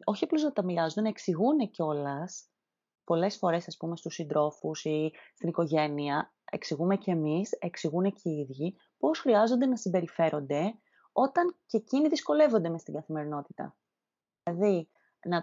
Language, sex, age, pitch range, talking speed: Greek, female, 30-49, 180-275 Hz, 145 wpm